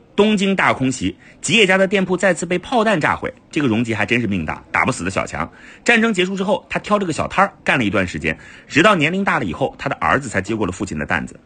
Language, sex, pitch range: Chinese, male, 120-195 Hz